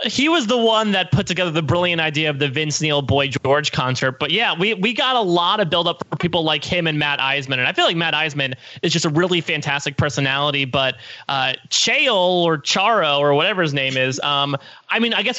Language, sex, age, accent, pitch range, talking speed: English, male, 20-39, American, 145-190 Hz, 235 wpm